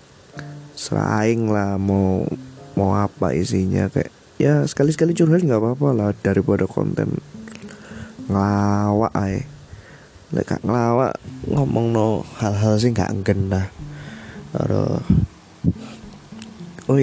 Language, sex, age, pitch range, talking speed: Indonesian, male, 20-39, 105-145 Hz, 90 wpm